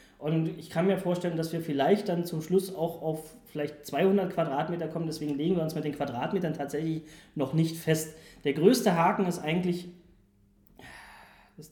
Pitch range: 145-170 Hz